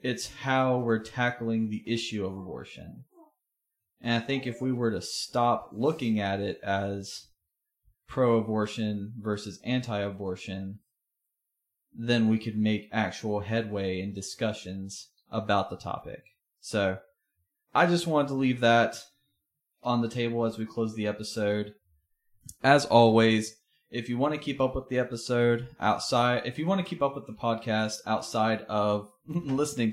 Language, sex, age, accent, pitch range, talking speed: English, male, 20-39, American, 110-130 Hz, 145 wpm